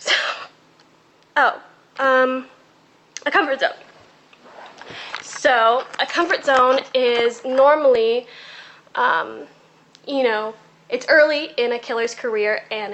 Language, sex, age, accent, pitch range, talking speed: English, female, 10-29, American, 215-295 Hz, 100 wpm